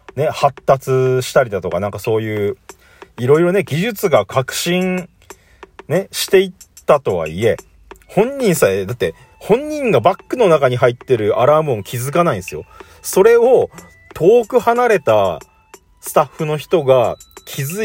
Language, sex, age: Japanese, male, 40-59